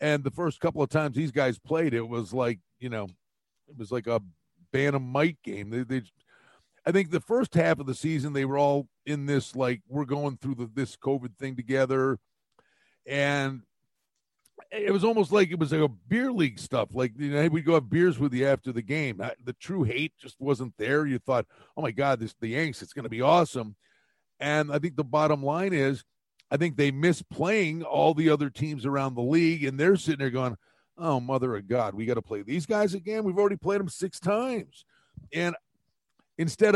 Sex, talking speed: male, 215 wpm